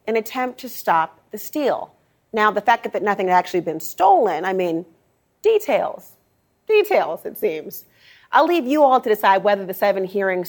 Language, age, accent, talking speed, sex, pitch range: English, 30-49, American, 185 wpm, female, 195-265 Hz